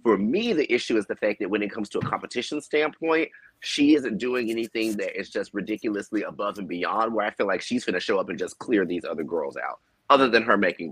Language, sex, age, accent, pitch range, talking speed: English, male, 30-49, American, 95-115 Hz, 245 wpm